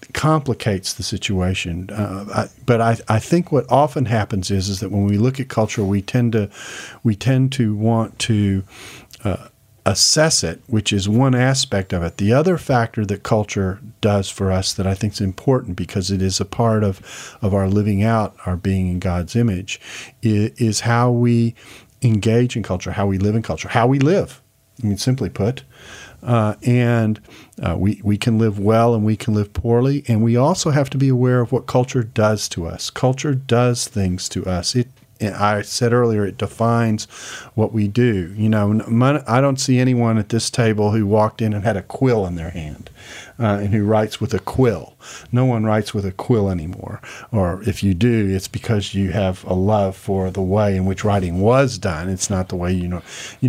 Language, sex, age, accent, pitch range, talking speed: English, male, 40-59, American, 100-125 Hz, 205 wpm